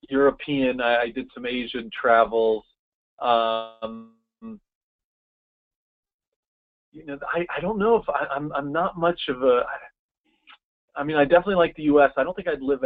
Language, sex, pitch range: English, male, 120-170 Hz